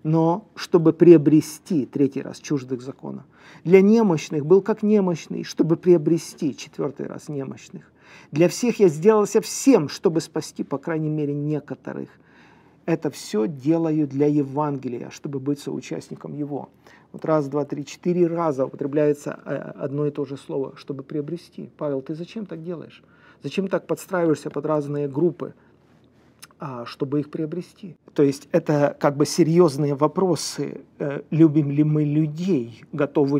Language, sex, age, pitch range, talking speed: Russian, male, 40-59, 140-165 Hz, 140 wpm